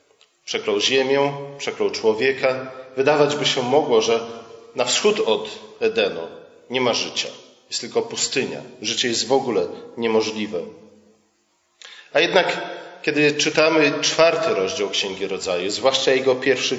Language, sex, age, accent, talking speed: Polish, male, 40-59, native, 125 wpm